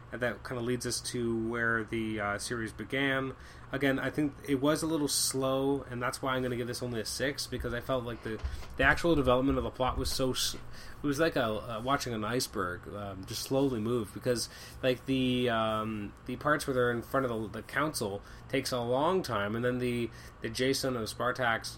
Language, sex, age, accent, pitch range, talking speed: English, male, 20-39, American, 110-135 Hz, 225 wpm